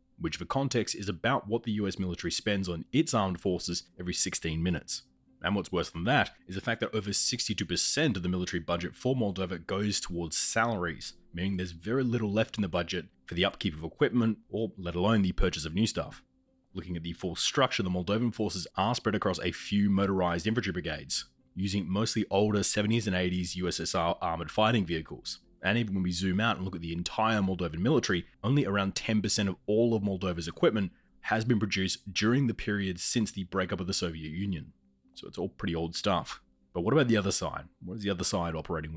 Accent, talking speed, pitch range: Australian, 210 wpm, 85-105 Hz